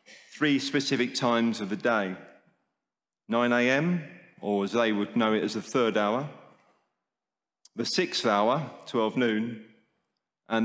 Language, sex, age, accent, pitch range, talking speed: English, male, 40-59, British, 110-135 Hz, 135 wpm